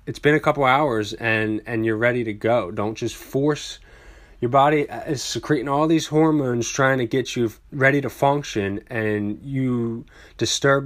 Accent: American